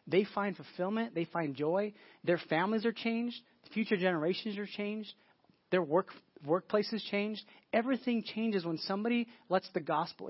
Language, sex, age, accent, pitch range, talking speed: English, male, 30-49, American, 155-200 Hz, 150 wpm